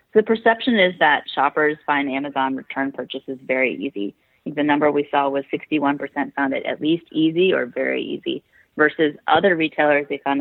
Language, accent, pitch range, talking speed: English, American, 140-180 Hz, 175 wpm